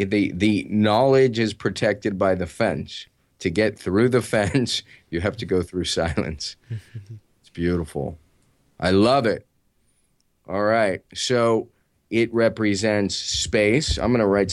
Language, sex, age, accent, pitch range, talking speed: English, male, 30-49, American, 90-110 Hz, 140 wpm